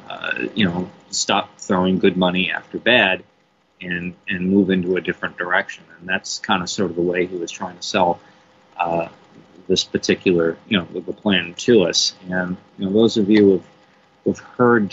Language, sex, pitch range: English, male, 90-105 Hz